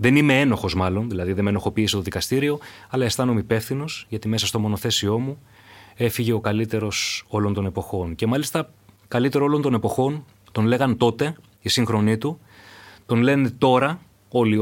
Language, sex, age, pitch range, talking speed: Greek, male, 30-49, 100-125 Hz, 165 wpm